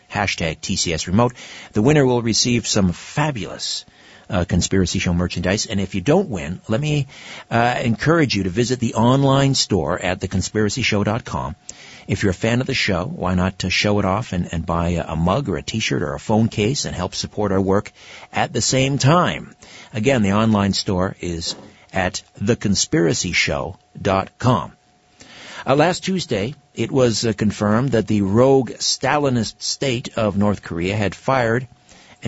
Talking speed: 165 wpm